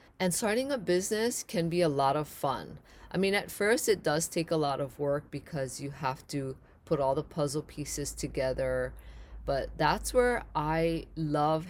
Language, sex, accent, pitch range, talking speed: English, female, American, 135-170 Hz, 185 wpm